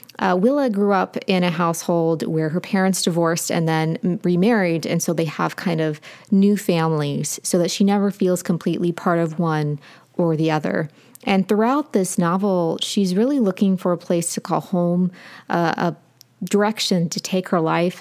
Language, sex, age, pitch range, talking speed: English, female, 30-49, 165-200 Hz, 175 wpm